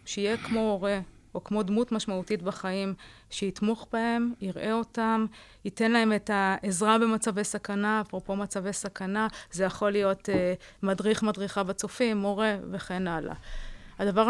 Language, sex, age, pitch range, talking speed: Hebrew, female, 30-49, 195-225 Hz, 135 wpm